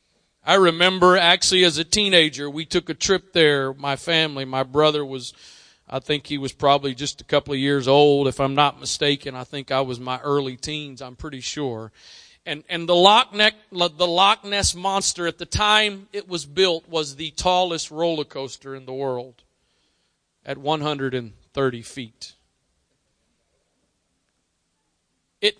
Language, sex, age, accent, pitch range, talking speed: English, male, 40-59, American, 135-200 Hz, 160 wpm